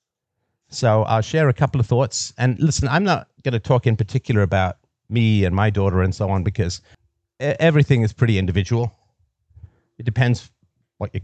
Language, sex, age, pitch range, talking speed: English, male, 50-69, 100-120 Hz, 175 wpm